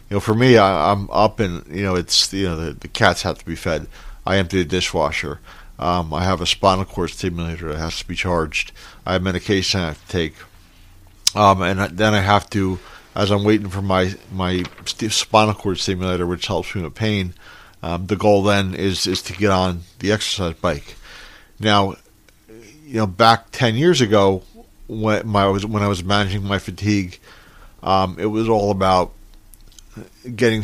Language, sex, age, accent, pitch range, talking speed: English, male, 40-59, American, 95-110 Hz, 190 wpm